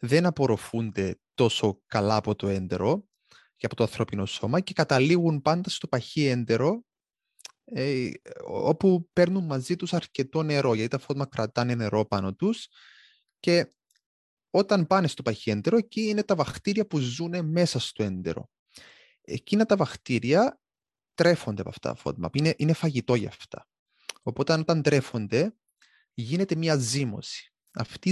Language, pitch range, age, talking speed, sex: Greek, 120-180 Hz, 20-39, 140 wpm, male